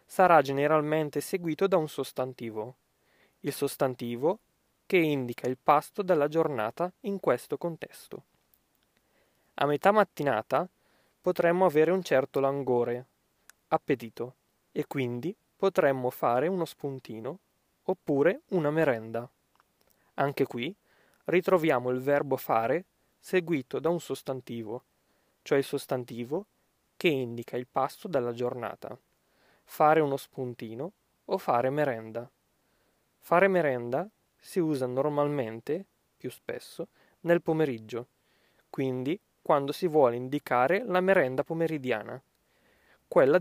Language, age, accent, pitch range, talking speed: Italian, 20-39, native, 125-165 Hz, 110 wpm